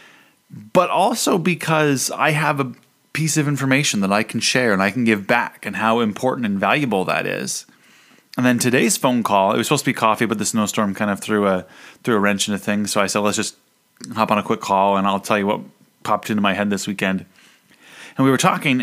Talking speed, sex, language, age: 235 wpm, male, English, 30-49